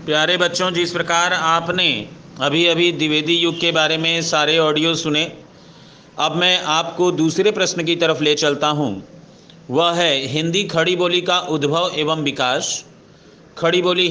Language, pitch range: Hindi, 155-180 Hz